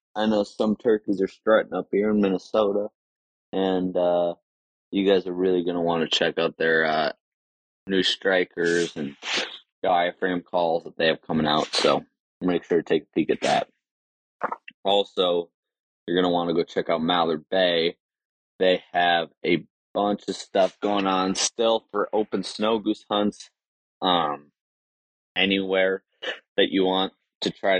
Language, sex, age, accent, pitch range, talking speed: English, male, 20-39, American, 85-100 Hz, 160 wpm